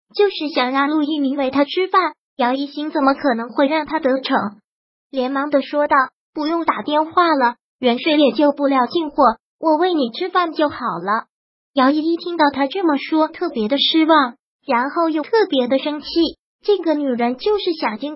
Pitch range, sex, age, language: 270-325 Hz, male, 20-39, Chinese